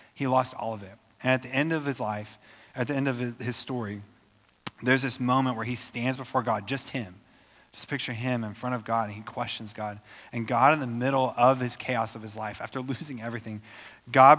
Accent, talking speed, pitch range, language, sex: American, 225 wpm, 105-130 Hz, English, male